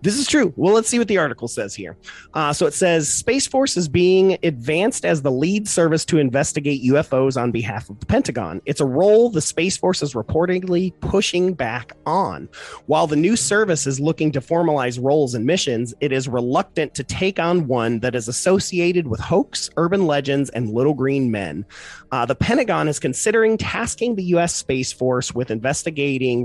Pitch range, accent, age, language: 125-175 Hz, American, 30-49, English